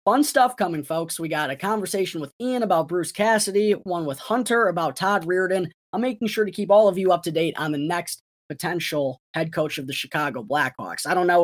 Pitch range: 160-220 Hz